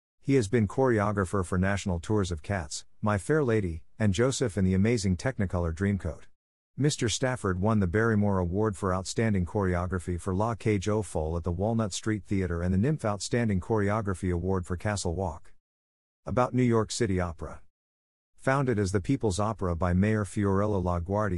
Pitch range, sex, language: 90-110 Hz, male, English